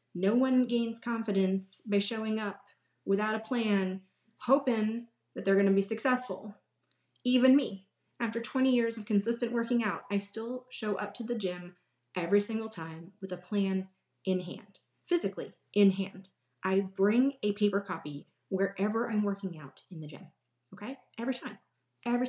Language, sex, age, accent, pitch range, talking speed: English, female, 30-49, American, 190-245 Hz, 160 wpm